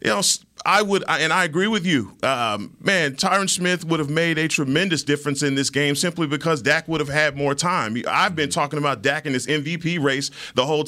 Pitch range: 140-165 Hz